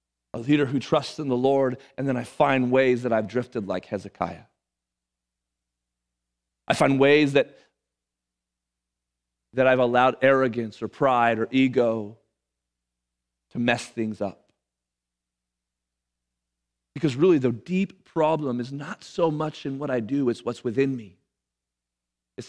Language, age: English, 40-59